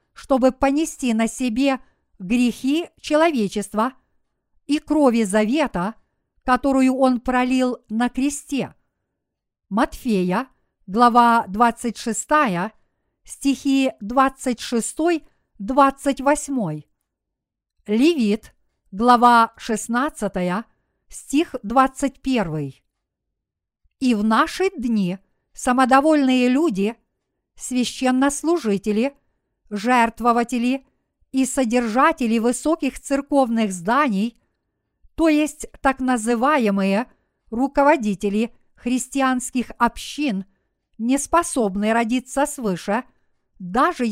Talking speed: 65 wpm